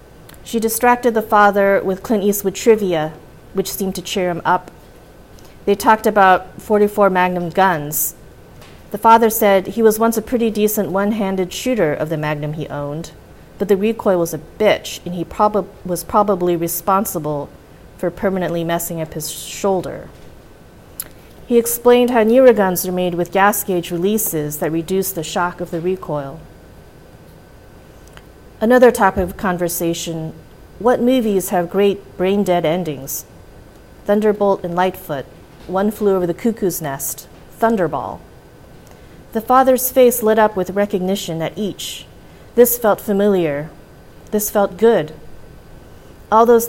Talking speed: 140 wpm